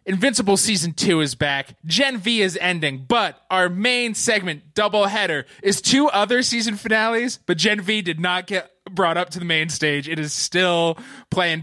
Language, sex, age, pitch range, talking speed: English, male, 20-39, 145-210 Hz, 185 wpm